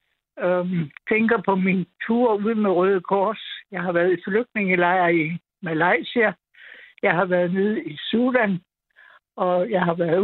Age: 60-79